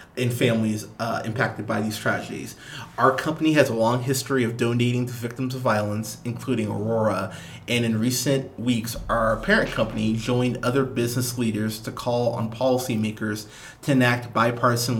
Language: English